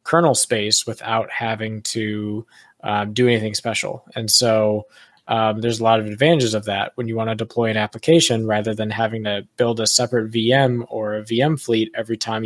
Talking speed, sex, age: 195 wpm, male, 20-39